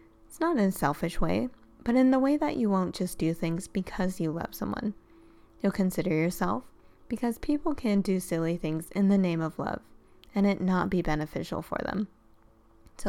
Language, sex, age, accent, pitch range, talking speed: English, female, 20-39, American, 160-210 Hz, 190 wpm